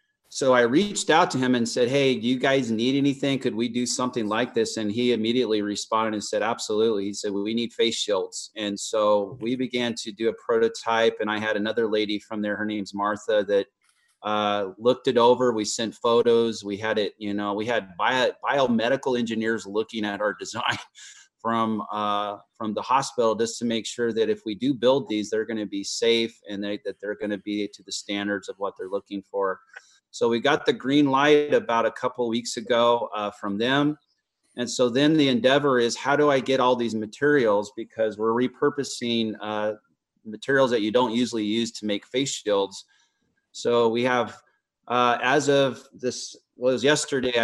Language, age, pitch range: English, 30-49, 105-130 Hz